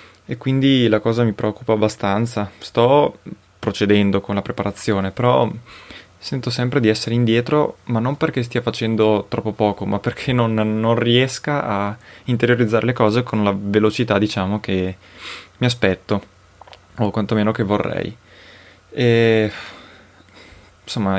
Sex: male